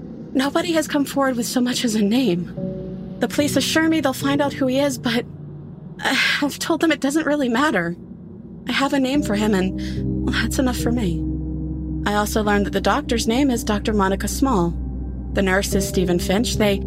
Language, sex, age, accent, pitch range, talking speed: English, female, 30-49, American, 185-260 Hz, 200 wpm